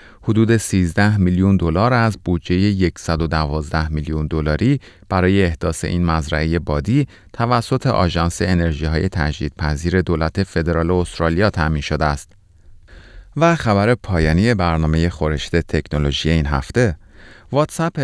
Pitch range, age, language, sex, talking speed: 80-110 Hz, 30-49, Persian, male, 110 wpm